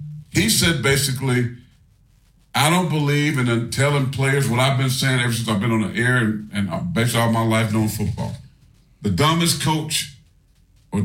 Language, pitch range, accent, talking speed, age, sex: English, 115-140 Hz, American, 175 wpm, 50-69, male